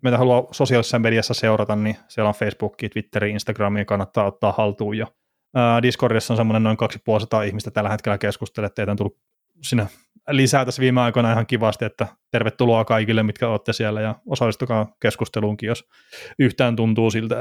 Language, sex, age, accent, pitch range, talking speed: Finnish, male, 20-39, native, 105-125 Hz, 160 wpm